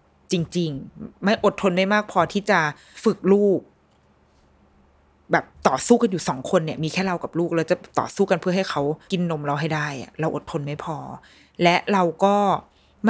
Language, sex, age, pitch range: Thai, female, 20-39, 155-205 Hz